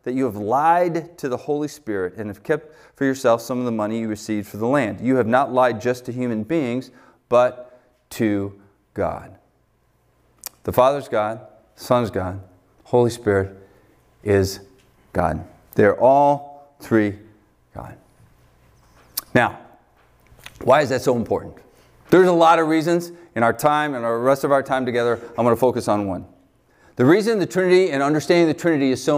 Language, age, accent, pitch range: English, 40-59, American, 115-155 Hz